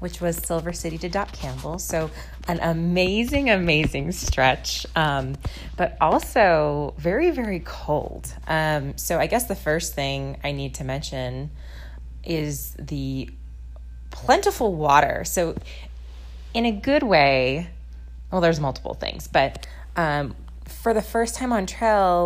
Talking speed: 135 wpm